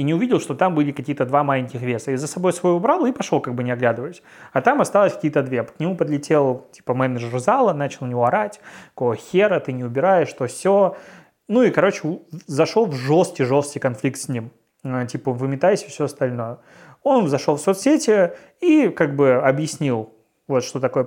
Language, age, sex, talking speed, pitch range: Russian, 20-39, male, 195 wpm, 130-170 Hz